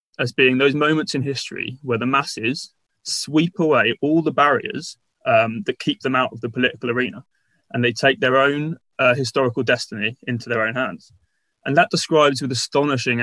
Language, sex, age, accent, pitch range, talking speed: English, male, 20-39, British, 120-145 Hz, 180 wpm